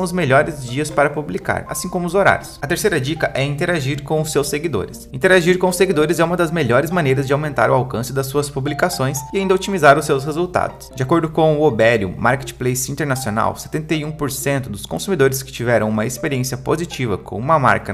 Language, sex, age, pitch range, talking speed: Portuguese, male, 20-39, 125-170 Hz, 195 wpm